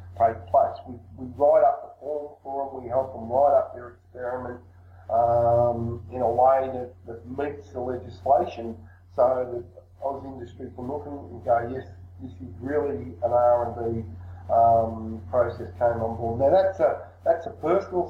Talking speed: 170 wpm